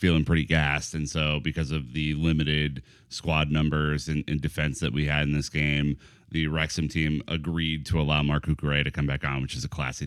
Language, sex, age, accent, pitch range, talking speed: English, male, 30-49, American, 75-95 Hz, 210 wpm